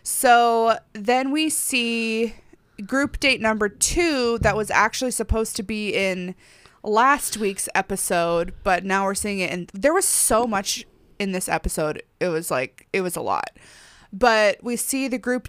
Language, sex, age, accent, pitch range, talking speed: English, female, 20-39, American, 185-235 Hz, 165 wpm